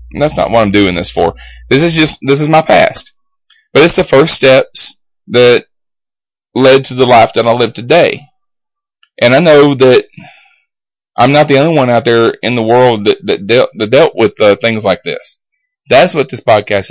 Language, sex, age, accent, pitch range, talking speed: English, male, 20-39, American, 105-160 Hz, 200 wpm